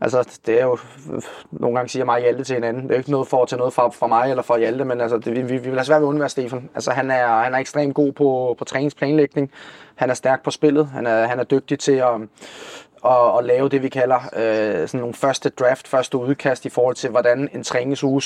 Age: 20-39